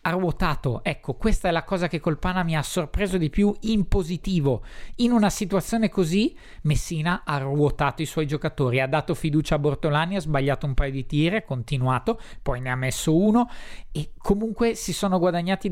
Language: Italian